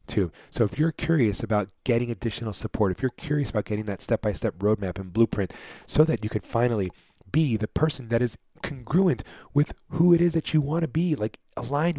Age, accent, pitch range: 30-49, American, 100-120 Hz